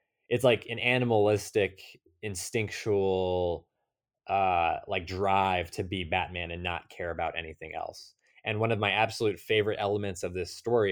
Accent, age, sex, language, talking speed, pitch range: American, 20-39, male, English, 150 wpm, 85-110 Hz